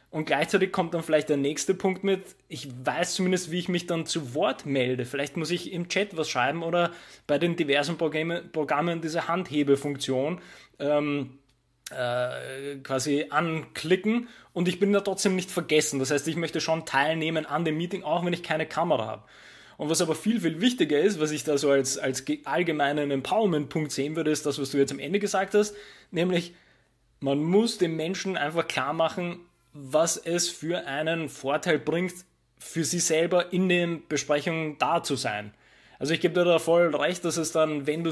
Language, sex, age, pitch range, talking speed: German, male, 20-39, 145-175 Hz, 190 wpm